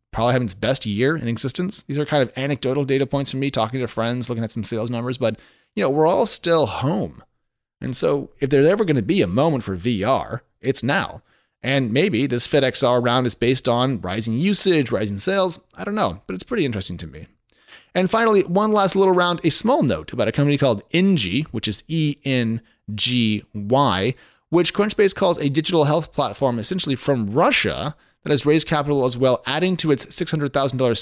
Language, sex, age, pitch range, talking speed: English, male, 30-49, 115-155 Hz, 200 wpm